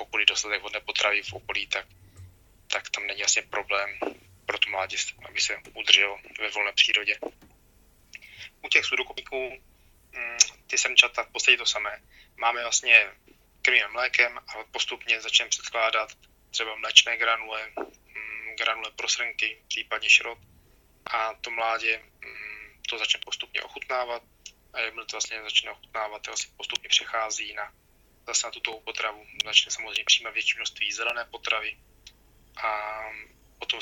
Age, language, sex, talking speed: 20-39, Czech, male, 140 wpm